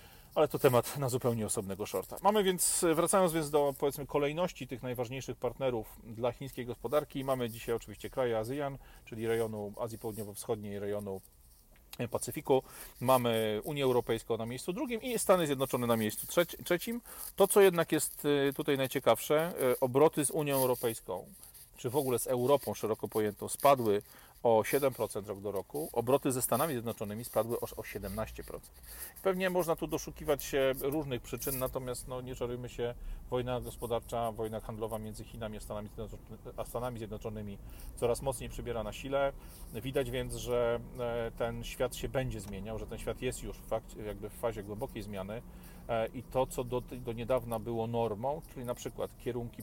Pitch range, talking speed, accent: 115-140 Hz, 165 wpm, native